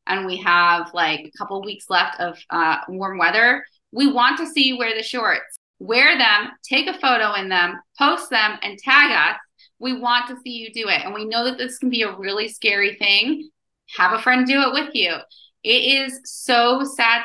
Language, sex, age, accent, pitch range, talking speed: English, female, 30-49, American, 195-245 Hz, 210 wpm